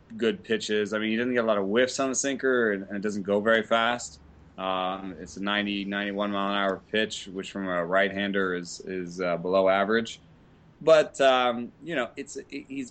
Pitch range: 95-115 Hz